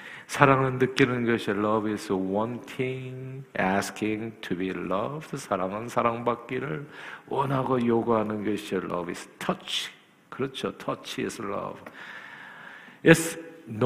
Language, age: Korean, 50-69